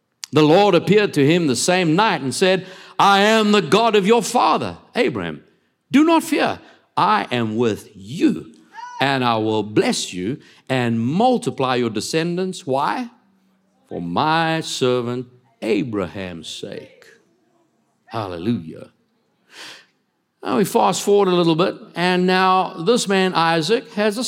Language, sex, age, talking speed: English, male, 60-79, 135 wpm